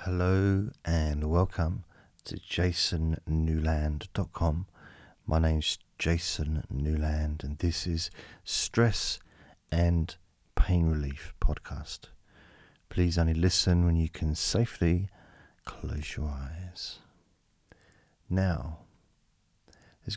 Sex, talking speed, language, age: male, 85 wpm, English, 40-59